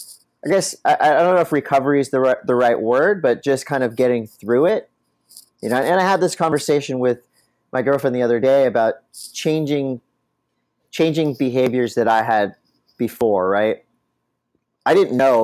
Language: English